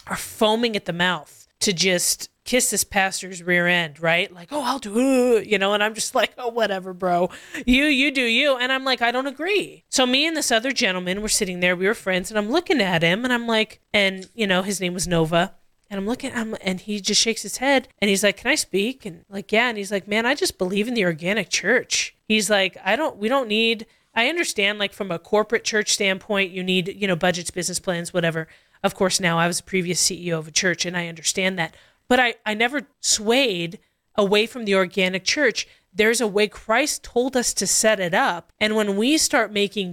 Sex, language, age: female, English, 20-39